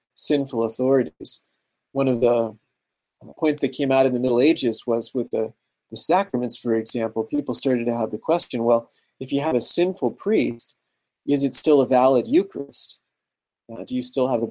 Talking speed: 185 wpm